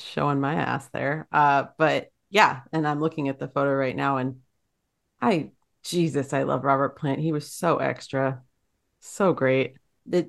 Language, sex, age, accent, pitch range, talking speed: English, female, 30-49, American, 135-155 Hz, 170 wpm